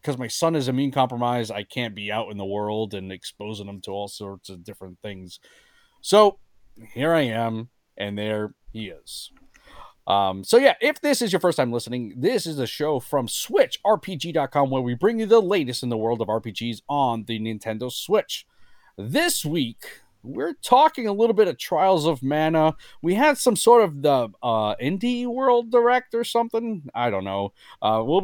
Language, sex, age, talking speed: English, male, 30-49, 190 wpm